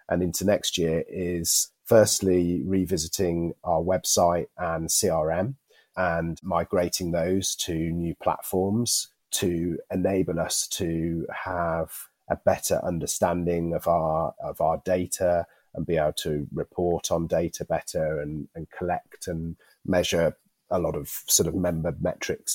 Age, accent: 30-49, British